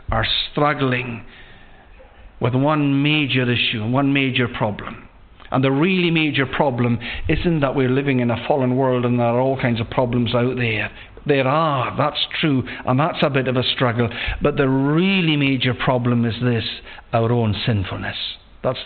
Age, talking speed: 50-69, 170 wpm